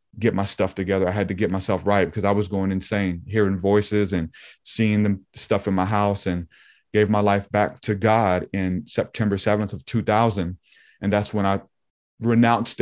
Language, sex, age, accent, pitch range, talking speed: English, male, 30-49, American, 95-110 Hz, 190 wpm